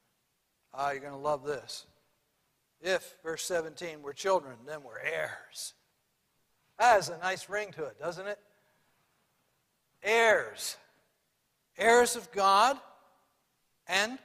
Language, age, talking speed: English, 60-79, 120 wpm